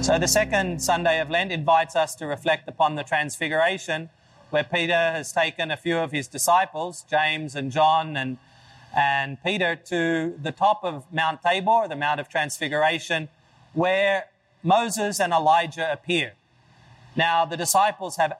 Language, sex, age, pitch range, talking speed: English, male, 30-49, 150-185 Hz, 155 wpm